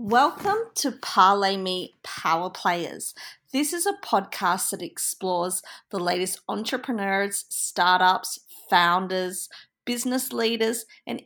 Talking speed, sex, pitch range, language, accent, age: 105 wpm, female, 195-250 Hz, English, Australian, 40-59